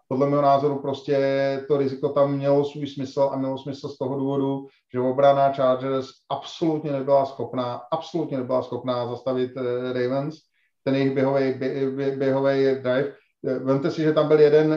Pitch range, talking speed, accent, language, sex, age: 135-155 Hz, 140 wpm, native, Czech, male, 40-59